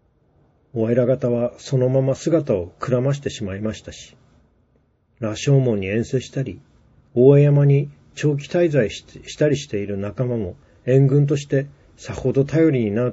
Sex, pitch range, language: male, 110-140 Hz, Japanese